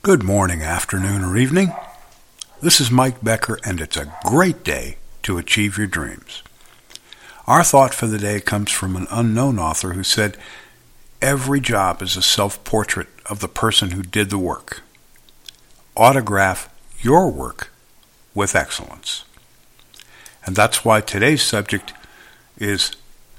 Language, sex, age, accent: English, male, 60-79, American